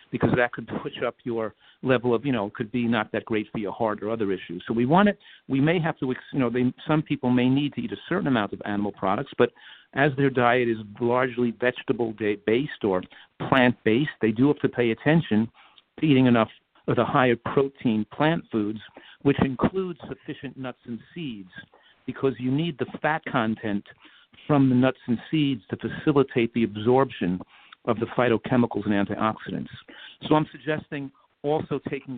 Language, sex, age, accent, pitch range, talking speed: English, male, 50-69, American, 110-135 Hz, 185 wpm